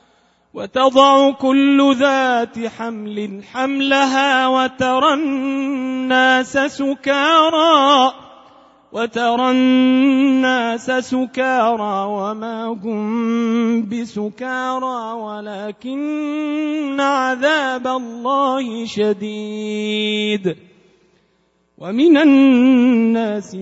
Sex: male